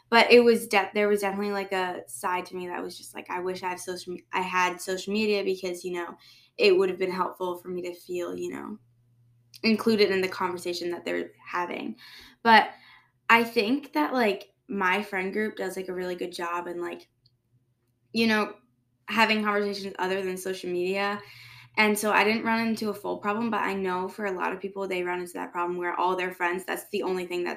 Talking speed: 220 wpm